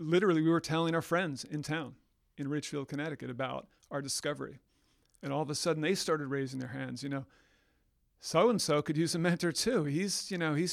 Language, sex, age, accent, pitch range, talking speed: English, male, 40-59, American, 140-165 Hz, 200 wpm